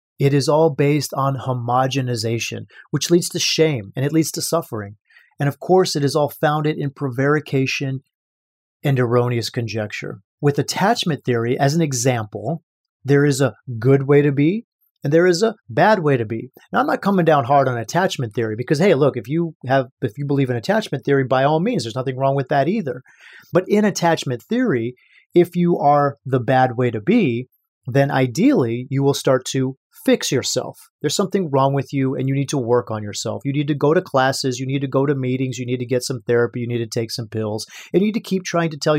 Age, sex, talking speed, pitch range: 30-49, male, 215 wpm, 125-165 Hz